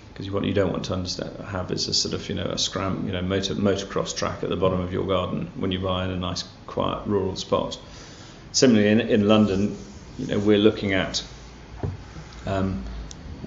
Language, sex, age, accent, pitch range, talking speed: English, male, 40-59, British, 90-105 Hz, 205 wpm